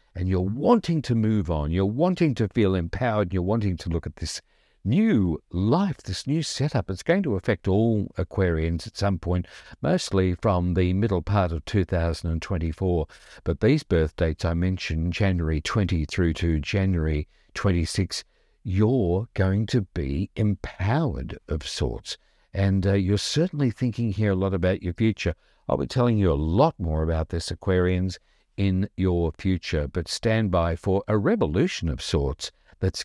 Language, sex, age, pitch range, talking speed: English, male, 50-69, 85-105 Hz, 165 wpm